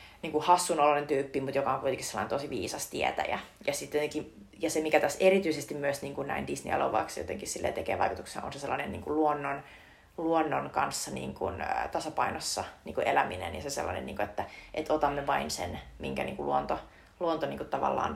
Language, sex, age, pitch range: Finnish, female, 30-49, 140-170 Hz